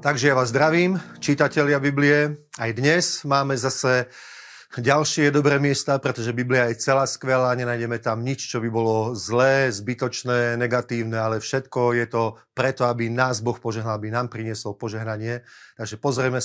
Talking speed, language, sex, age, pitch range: 155 wpm, Slovak, male, 30-49, 120-135 Hz